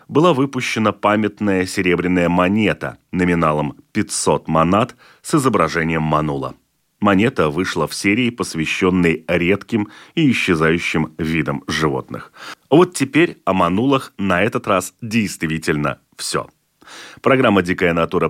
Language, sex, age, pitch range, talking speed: Russian, male, 30-49, 75-105 Hz, 110 wpm